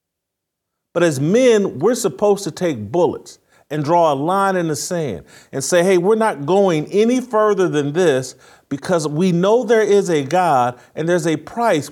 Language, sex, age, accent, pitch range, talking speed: English, male, 40-59, American, 145-210 Hz, 180 wpm